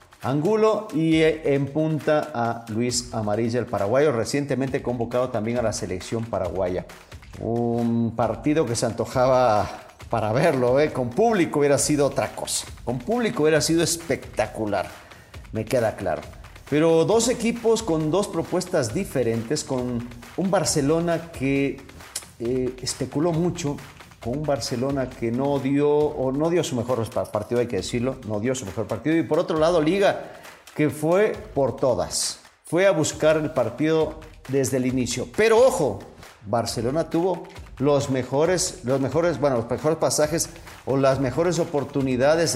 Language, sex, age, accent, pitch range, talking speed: English, male, 50-69, Mexican, 120-160 Hz, 145 wpm